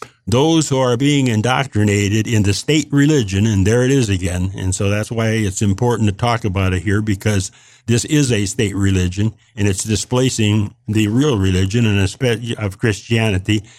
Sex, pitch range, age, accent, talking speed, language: male, 105-125 Hz, 60-79, American, 180 wpm, English